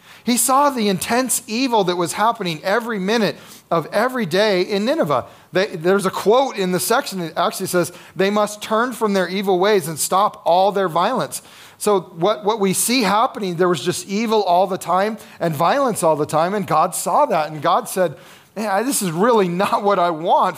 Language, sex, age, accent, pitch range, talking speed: English, male, 40-59, American, 155-210 Hz, 200 wpm